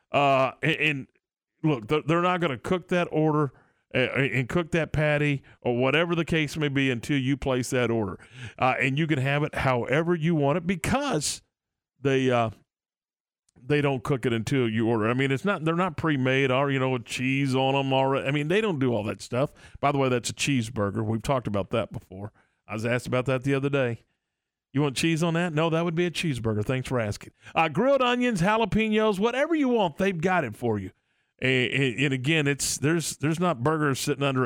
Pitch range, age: 125-165 Hz, 40-59